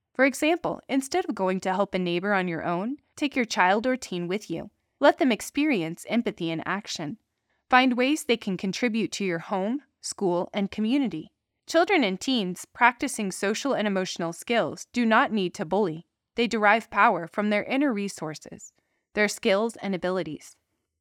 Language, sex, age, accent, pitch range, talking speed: English, female, 20-39, American, 185-255 Hz, 170 wpm